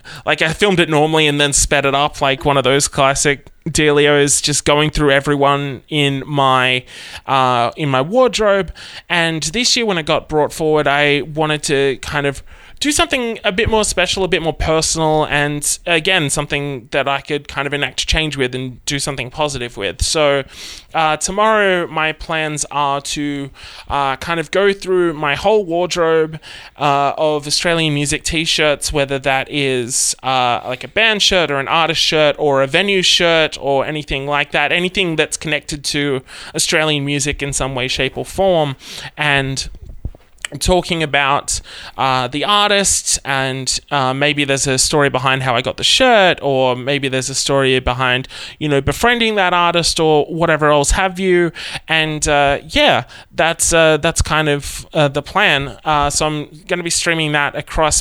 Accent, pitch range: Australian, 140-165 Hz